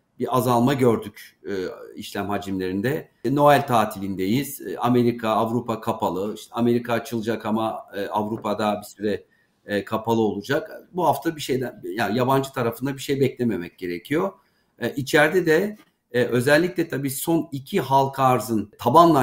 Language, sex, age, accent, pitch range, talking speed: Turkish, male, 50-69, native, 110-135 Hz, 145 wpm